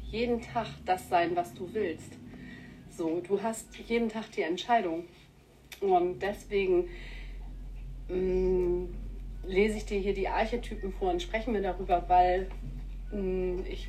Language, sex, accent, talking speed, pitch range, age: German, female, German, 125 wpm, 180-220 Hz, 40-59